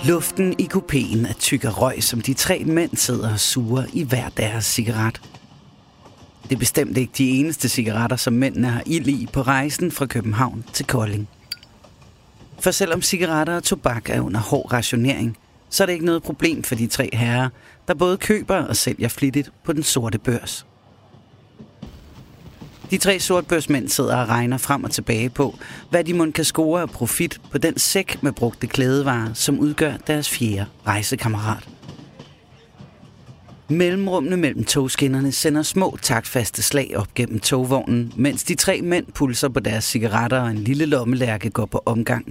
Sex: male